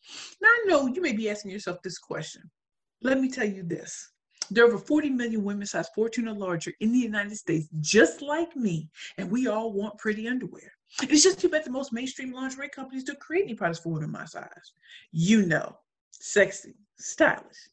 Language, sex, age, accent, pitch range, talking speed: English, female, 40-59, American, 180-240 Hz, 200 wpm